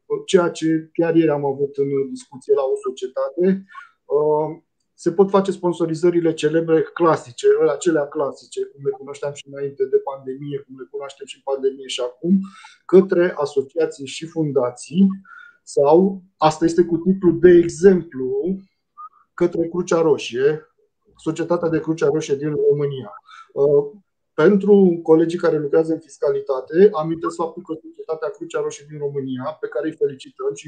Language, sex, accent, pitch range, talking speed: Romanian, male, native, 155-205 Hz, 145 wpm